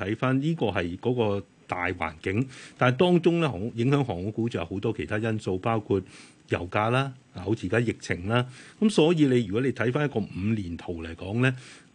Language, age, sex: Chinese, 30-49, male